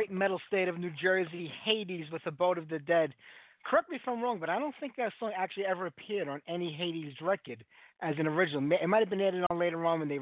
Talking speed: 250 wpm